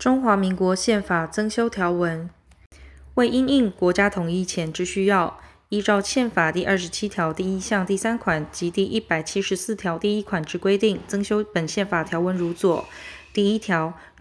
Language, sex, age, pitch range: Chinese, female, 20-39, 175-215 Hz